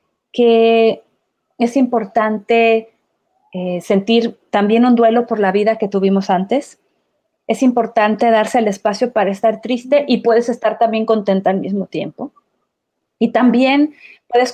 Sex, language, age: female, Spanish, 30-49